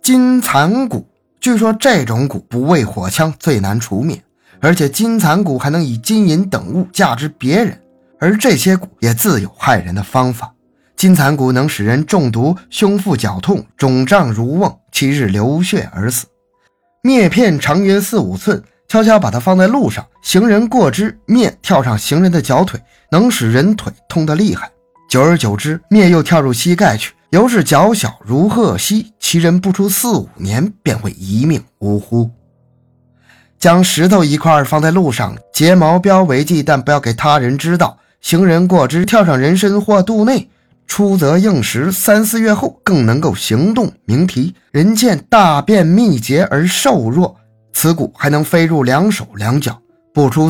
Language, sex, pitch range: Chinese, male, 130-200 Hz